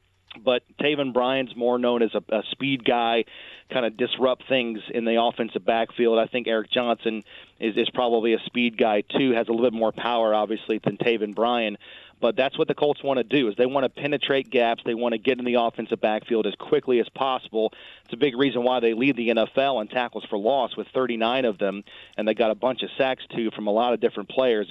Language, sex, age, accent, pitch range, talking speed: English, male, 40-59, American, 110-125 Hz, 235 wpm